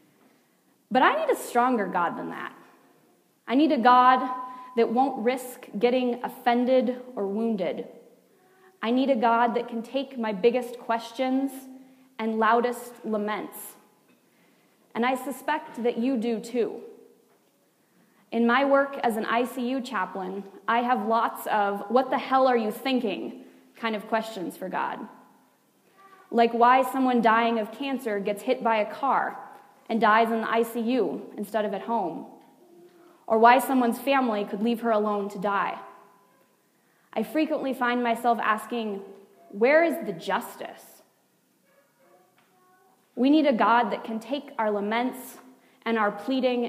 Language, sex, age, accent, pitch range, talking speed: English, female, 20-39, American, 220-255 Hz, 145 wpm